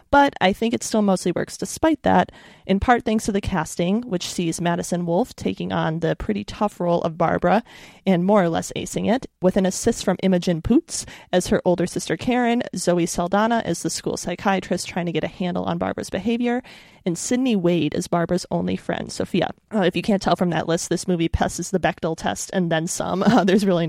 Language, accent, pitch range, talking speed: English, American, 175-205 Hz, 215 wpm